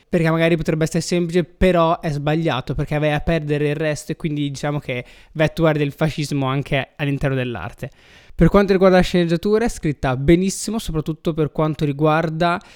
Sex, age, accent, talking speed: male, 20-39, native, 170 wpm